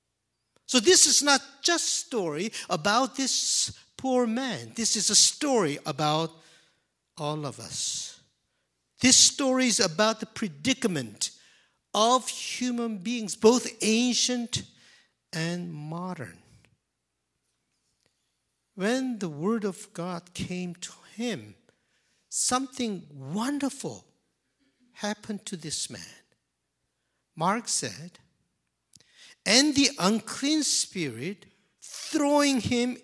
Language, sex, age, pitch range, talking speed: English, male, 60-79, 155-245 Hz, 100 wpm